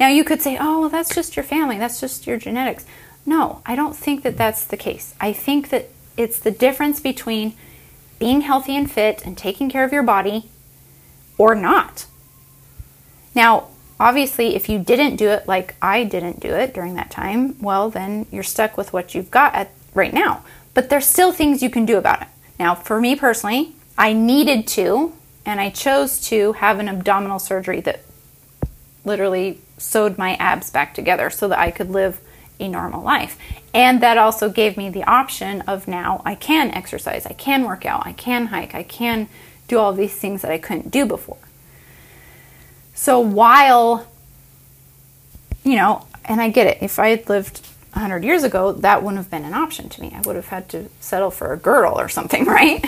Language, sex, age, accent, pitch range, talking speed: English, female, 30-49, American, 200-270 Hz, 190 wpm